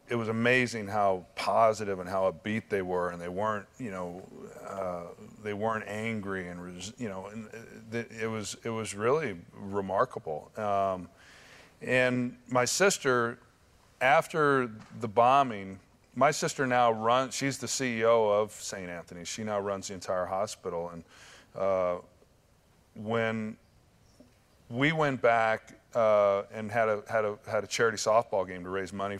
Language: English